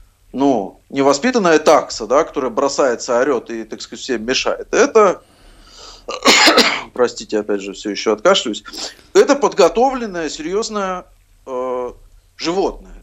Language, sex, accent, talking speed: Russian, male, native, 110 wpm